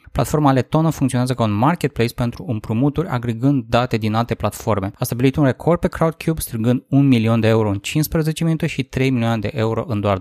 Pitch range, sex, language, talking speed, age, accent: 110-135 Hz, male, Romanian, 200 wpm, 20-39, native